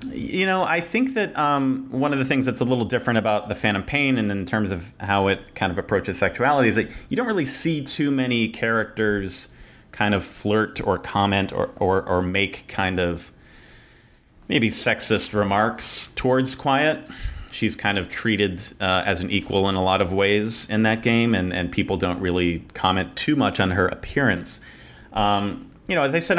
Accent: American